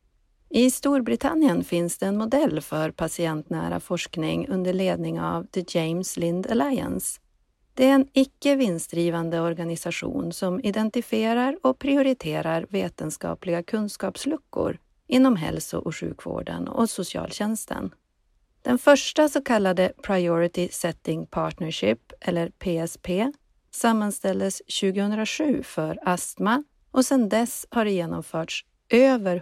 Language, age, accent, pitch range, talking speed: Swedish, 40-59, native, 170-245 Hz, 110 wpm